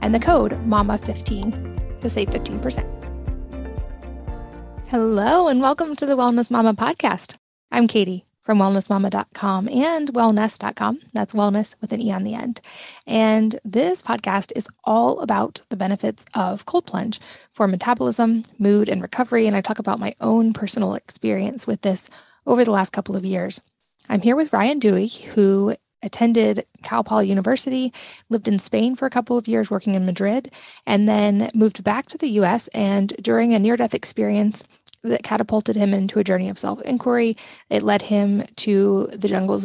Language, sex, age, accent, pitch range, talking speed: English, female, 20-39, American, 195-235 Hz, 165 wpm